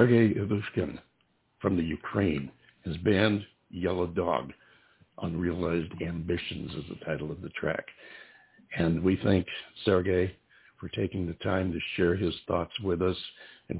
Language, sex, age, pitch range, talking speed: English, male, 60-79, 90-105 Hz, 140 wpm